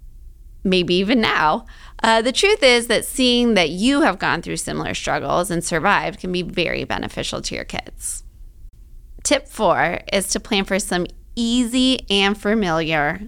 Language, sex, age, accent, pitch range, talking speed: English, female, 20-39, American, 175-235 Hz, 160 wpm